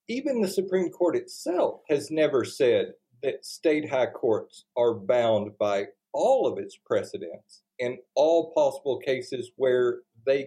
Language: English